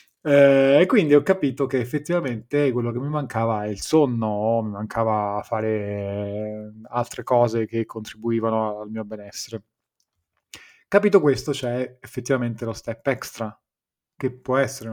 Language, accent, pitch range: Italian, native, 110-125 Hz